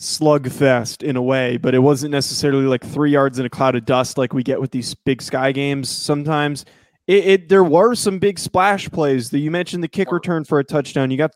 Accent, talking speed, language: American, 240 wpm, English